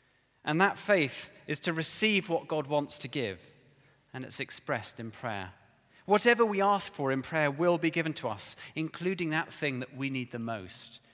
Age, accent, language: 40-59, British, English